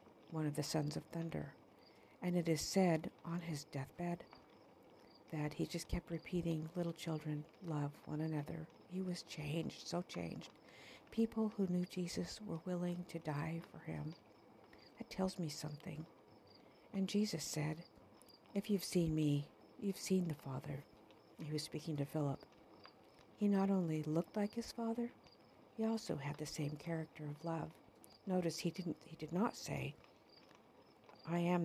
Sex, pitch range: female, 150-175 Hz